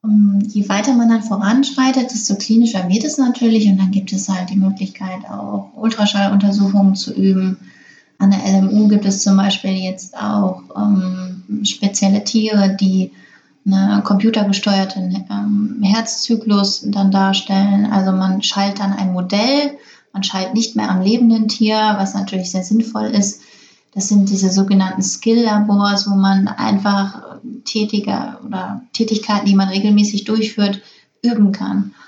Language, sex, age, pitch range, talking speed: German, female, 20-39, 190-210 Hz, 135 wpm